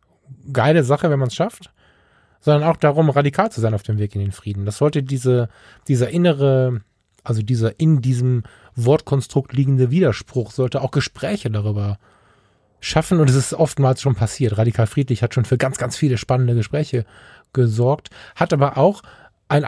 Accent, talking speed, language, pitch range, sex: German, 170 wpm, German, 115-140 Hz, male